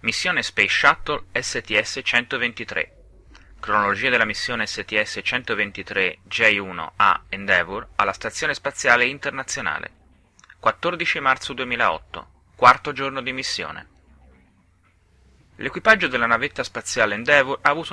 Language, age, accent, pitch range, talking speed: Italian, 30-49, native, 90-120 Hz, 95 wpm